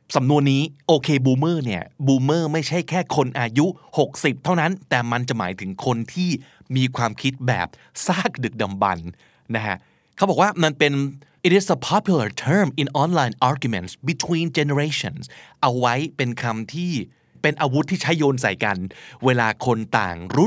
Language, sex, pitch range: Thai, male, 115-160 Hz